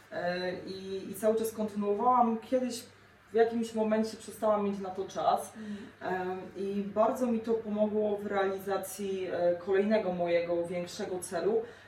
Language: Polish